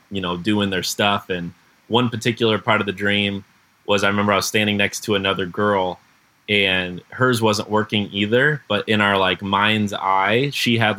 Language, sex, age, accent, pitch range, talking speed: English, male, 20-39, American, 95-110 Hz, 190 wpm